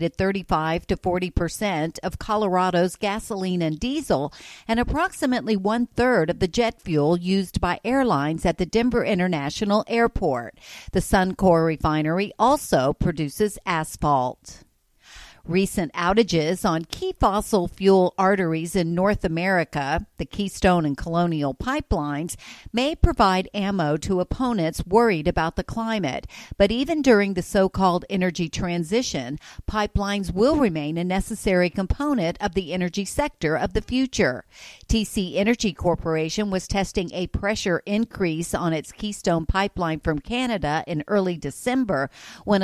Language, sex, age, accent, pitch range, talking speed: English, female, 50-69, American, 170-220 Hz, 130 wpm